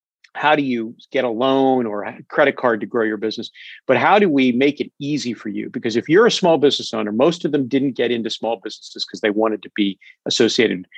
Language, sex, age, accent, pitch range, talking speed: English, male, 50-69, American, 115-140 Hz, 240 wpm